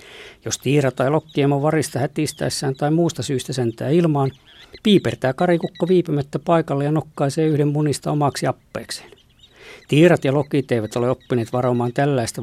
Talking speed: 140 wpm